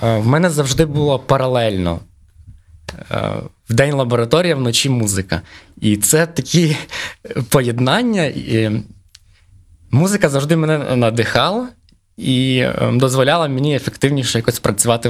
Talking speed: 100 wpm